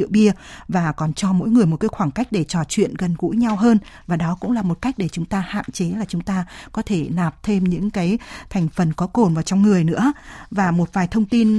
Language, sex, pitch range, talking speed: Vietnamese, female, 175-220 Hz, 260 wpm